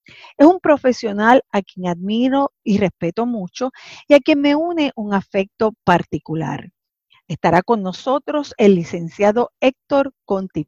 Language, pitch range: Spanish, 180-250 Hz